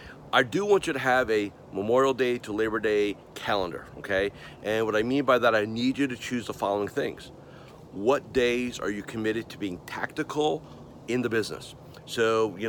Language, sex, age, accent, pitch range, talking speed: English, male, 40-59, American, 110-135 Hz, 195 wpm